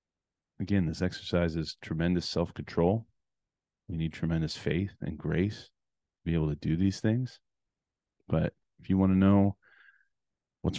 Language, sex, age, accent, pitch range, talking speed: English, male, 30-49, American, 80-95 Hz, 145 wpm